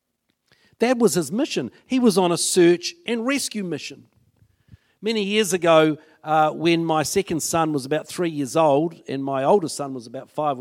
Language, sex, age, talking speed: English, male, 50-69, 180 wpm